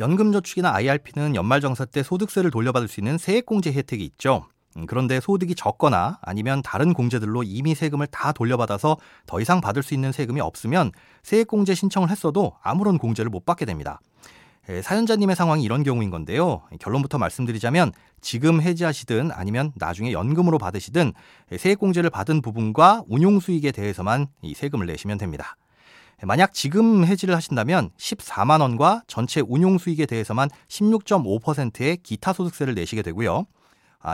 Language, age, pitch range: Korean, 30-49, 115-180 Hz